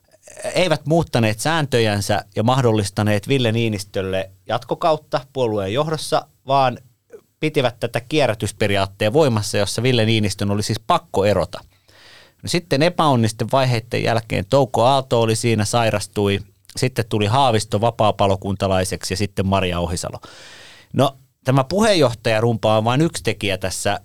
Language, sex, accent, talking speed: Finnish, male, native, 120 wpm